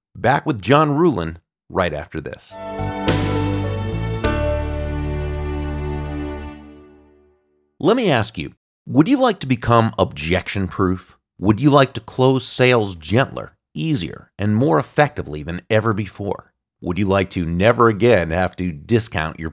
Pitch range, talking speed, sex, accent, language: 90-120 Hz, 125 wpm, male, American, English